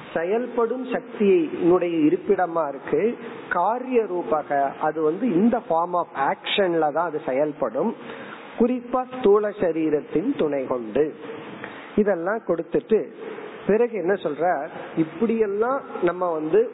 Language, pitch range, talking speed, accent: Tamil, 160-235 Hz, 40 wpm, native